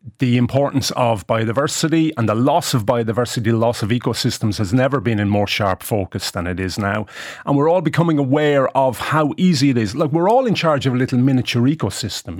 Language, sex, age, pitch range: English, male, 30-49, 110-140 Hz